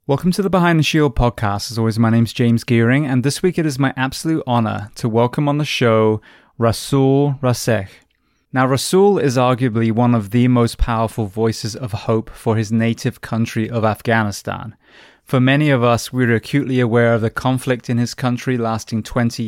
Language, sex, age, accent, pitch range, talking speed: English, male, 20-39, British, 110-130 Hz, 195 wpm